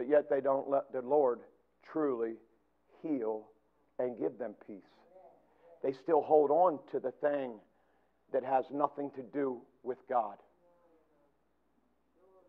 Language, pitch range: English, 130-185 Hz